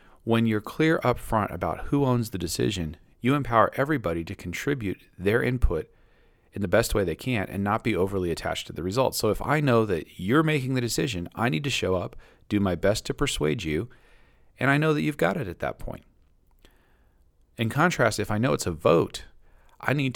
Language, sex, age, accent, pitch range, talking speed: English, male, 40-59, American, 90-120 Hz, 210 wpm